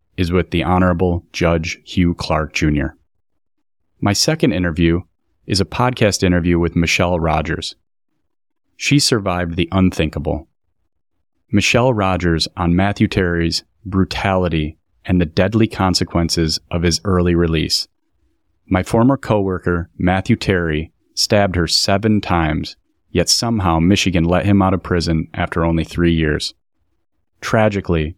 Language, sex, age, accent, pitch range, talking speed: English, male, 30-49, American, 85-100 Hz, 125 wpm